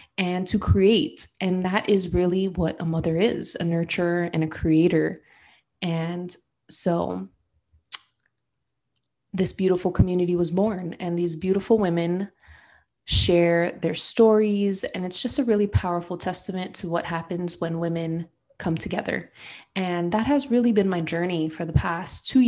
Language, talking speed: English, 145 wpm